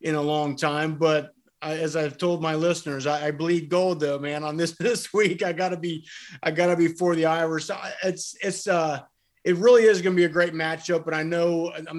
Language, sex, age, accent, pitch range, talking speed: English, male, 30-49, American, 145-170 Hz, 220 wpm